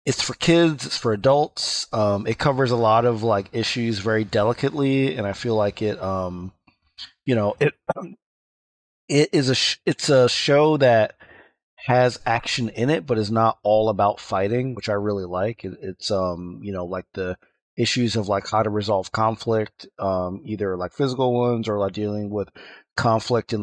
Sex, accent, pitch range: male, American, 100-125 Hz